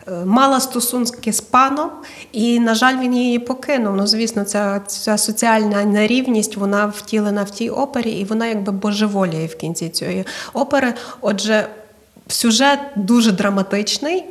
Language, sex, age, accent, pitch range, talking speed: Ukrainian, female, 20-39, native, 190-225 Hz, 140 wpm